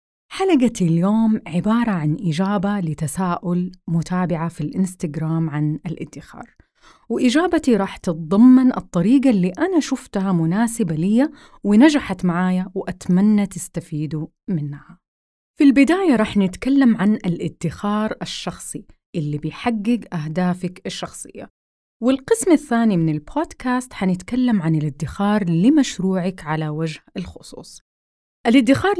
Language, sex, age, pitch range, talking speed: Arabic, female, 30-49, 170-240 Hz, 100 wpm